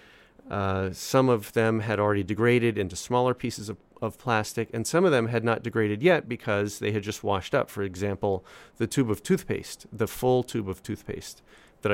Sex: male